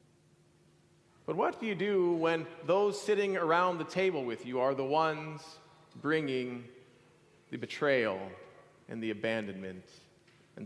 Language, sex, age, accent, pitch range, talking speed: English, male, 40-59, American, 140-185 Hz, 130 wpm